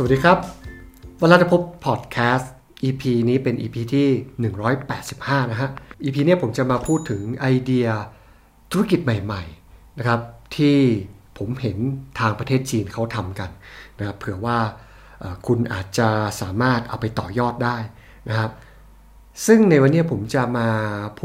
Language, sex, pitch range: Thai, male, 115-160 Hz